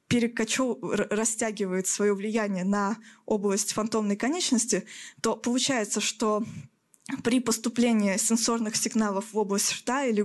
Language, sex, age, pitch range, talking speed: Russian, female, 20-39, 210-245 Hz, 105 wpm